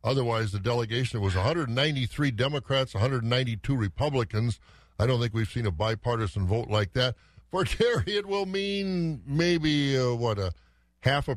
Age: 60-79